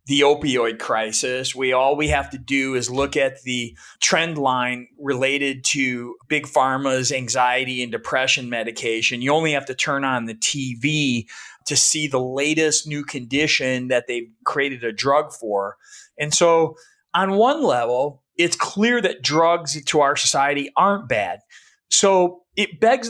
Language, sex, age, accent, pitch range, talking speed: English, male, 30-49, American, 130-170 Hz, 155 wpm